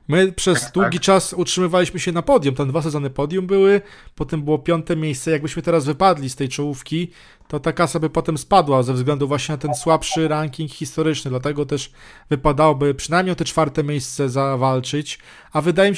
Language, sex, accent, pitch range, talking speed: Polish, male, native, 140-180 Hz, 185 wpm